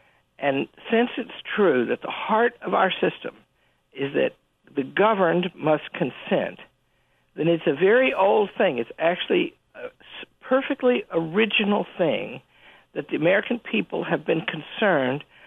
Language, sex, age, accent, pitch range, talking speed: English, male, 60-79, American, 165-225 Hz, 135 wpm